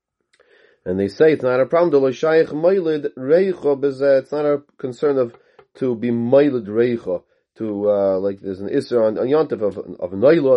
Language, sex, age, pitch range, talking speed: English, male, 30-49, 110-145 Hz, 150 wpm